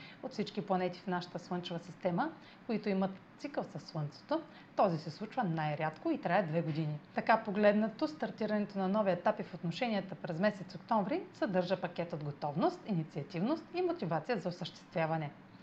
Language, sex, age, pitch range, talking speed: Bulgarian, female, 30-49, 170-225 Hz, 155 wpm